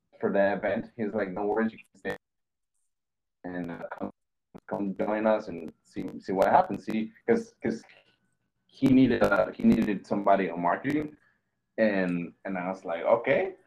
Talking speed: 165 wpm